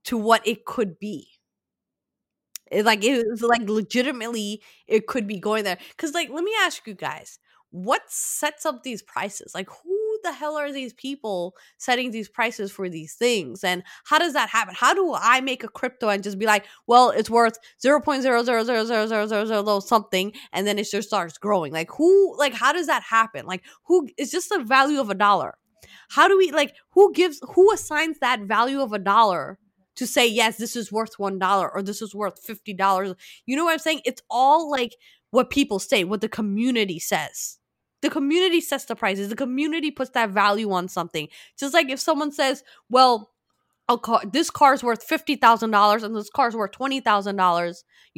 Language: English